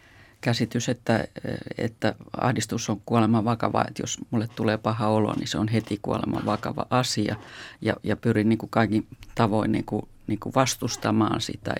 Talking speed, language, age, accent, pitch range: 170 wpm, Finnish, 50-69, native, 105-120 Hz